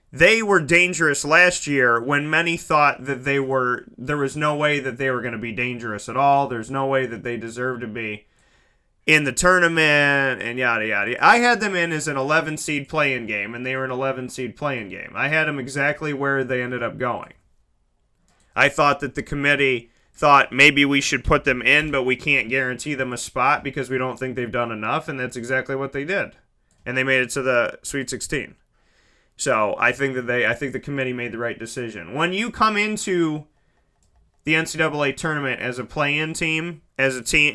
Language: English